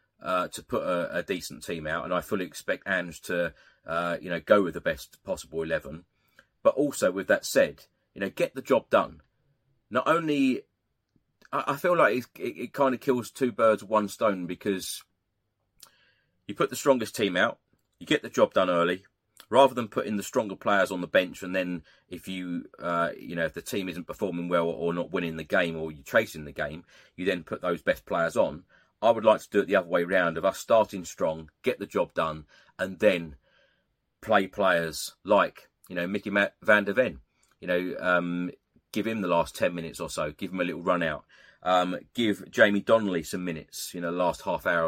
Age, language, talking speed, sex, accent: 30-49, English, 215 wpm, male, British